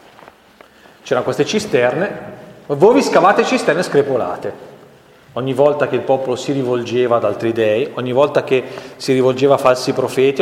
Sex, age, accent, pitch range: male, 30-49, native, 125-180 Hz